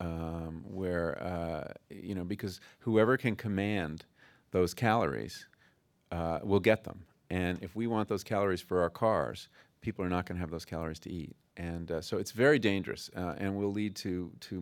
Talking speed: 190 wpm